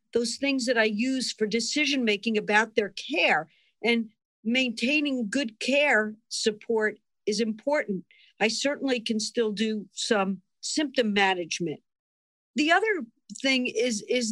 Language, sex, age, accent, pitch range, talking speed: English, female, 50-69, American, 215-265 Hz, 125 wpm